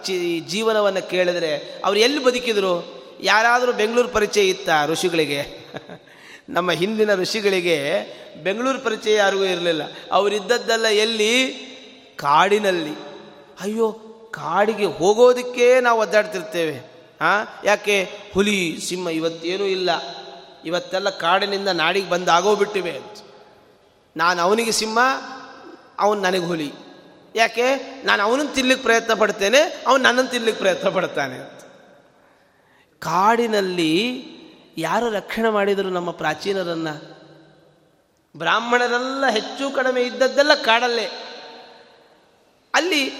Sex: male